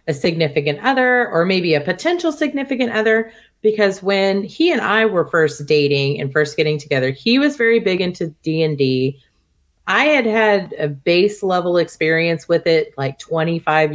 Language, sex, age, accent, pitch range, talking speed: English, female, 30-49, American, 150-210 Hz, 165 wpm